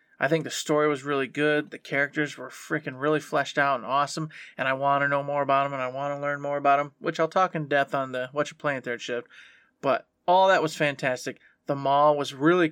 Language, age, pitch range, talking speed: English, 20-39, 135-155 Hz, 250 wpm